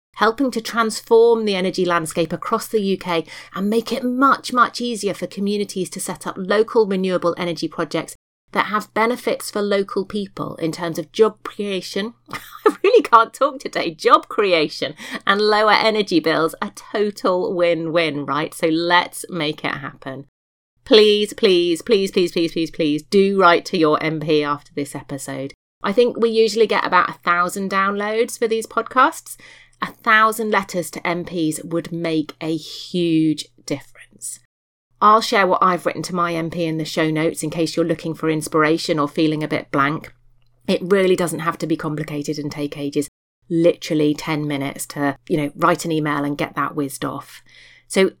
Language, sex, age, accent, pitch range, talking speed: English, female, 30-49, British, 155-210 Hz, 175 wpm